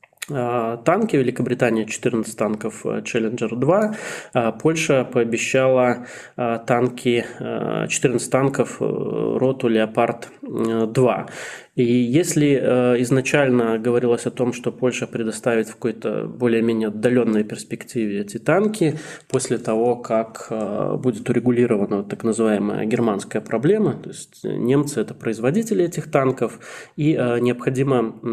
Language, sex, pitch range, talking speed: Russian, male, 115-130 Hz, 100 wpm